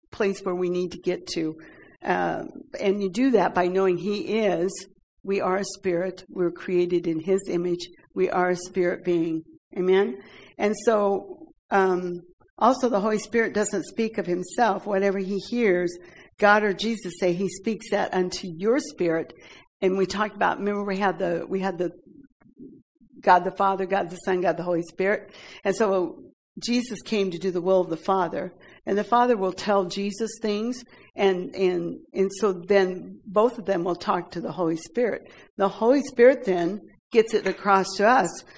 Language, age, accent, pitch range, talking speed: English, 60-79, American, 180-215 Hz, 180 wpm